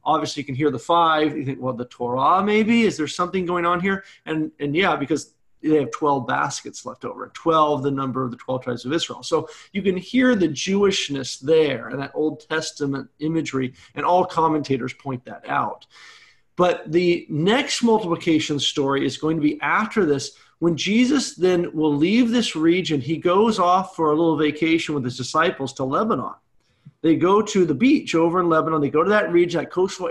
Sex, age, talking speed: male, 40-59, 200 wpm